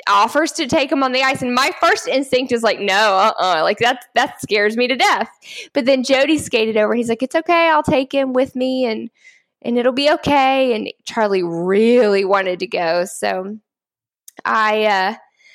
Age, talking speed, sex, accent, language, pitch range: 10-29, 200 wpm, female, American, English, 210-275 Hz